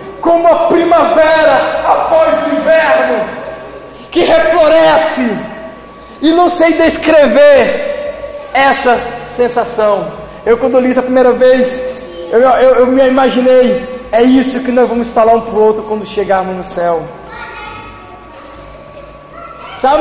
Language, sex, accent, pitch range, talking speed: Portuguese, male, Brazilian, 245-330 Hz, 125 wpm